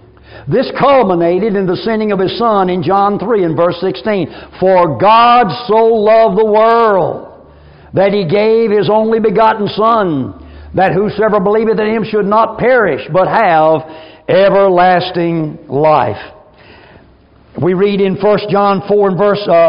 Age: 60-79